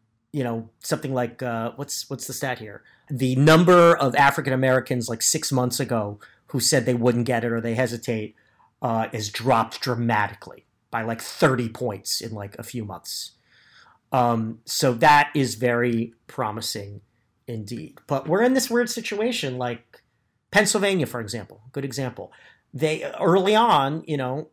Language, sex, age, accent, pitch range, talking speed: English, male, 40-59, American, 115-145 Hz, 160 wpm